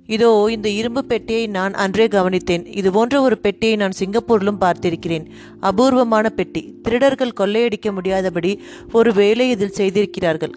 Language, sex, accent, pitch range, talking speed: Tamil, female, native, 185-230 Hz, 125 wpm